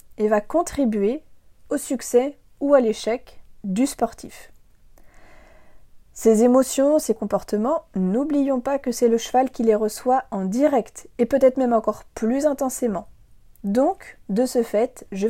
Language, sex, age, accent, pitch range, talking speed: French, female, 30-49, French, 215-275 Hz, 140 wpm